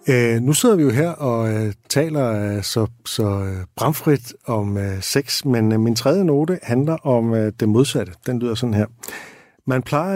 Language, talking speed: Danish, 155 wpm